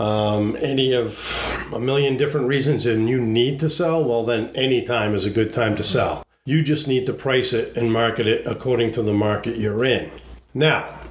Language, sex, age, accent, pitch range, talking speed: English, male, 50-69, American, 115-150 Hz, 205 wpm